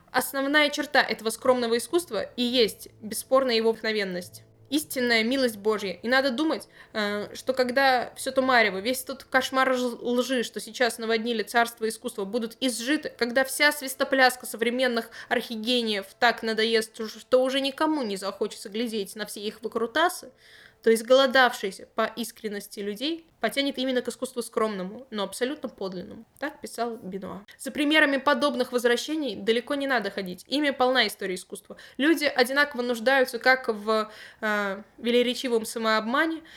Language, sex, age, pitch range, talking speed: Russian, female, 20-39, 220-260 Hz, 140 wpm